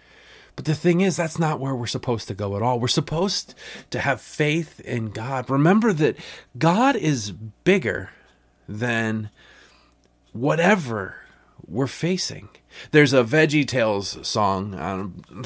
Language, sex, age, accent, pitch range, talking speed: English, male, 30-49, American, 105-155 Hz, 135 wpm